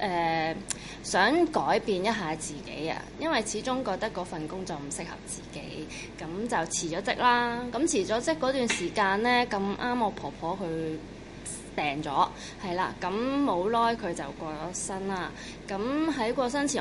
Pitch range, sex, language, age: 170-230 Hz, female, Chinese, 20-39